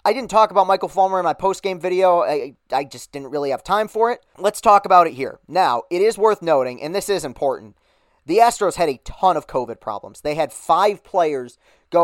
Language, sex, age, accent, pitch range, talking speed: English, male, 30-49, American, 150-200 Hz, 230 wpm